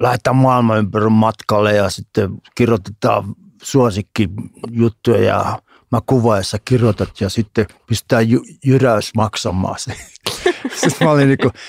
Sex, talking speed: male, 130 wpm